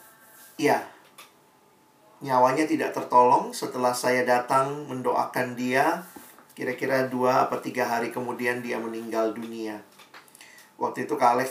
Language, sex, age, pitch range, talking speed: Indonesian, male, 40-59, 125-190 Hz, 115 wpm